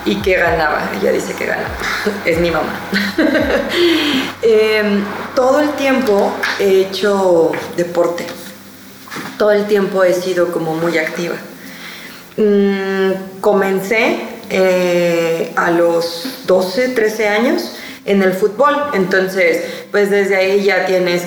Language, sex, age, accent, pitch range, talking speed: Spanish, female, 20-39, Mexican, 180-215 Hz, 120 wpm